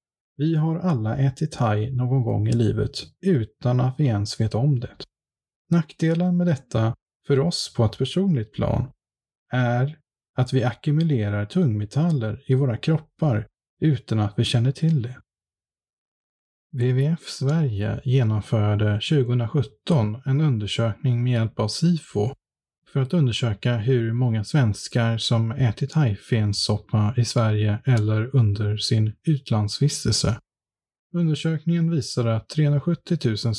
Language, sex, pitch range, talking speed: Swedish, male, 110-140 Hz, 125 wpm